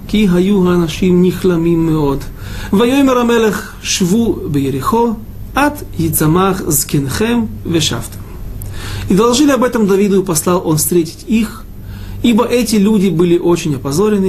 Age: 40-59